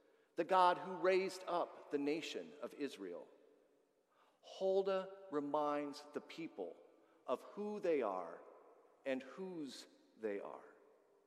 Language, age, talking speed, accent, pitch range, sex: English, 40-59, 110 wpm, American, 135-210 Hz, male